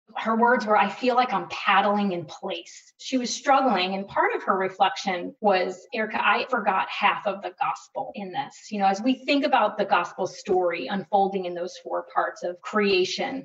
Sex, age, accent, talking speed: female, 30-49, American, 195 wpm